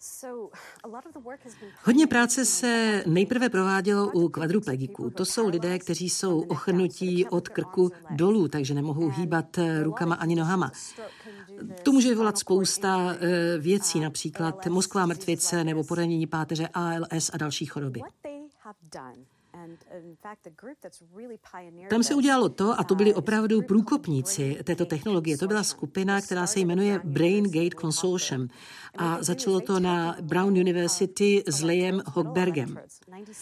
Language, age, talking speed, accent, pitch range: Czech, 50-69, 115 wpm, native, 165-210 Hz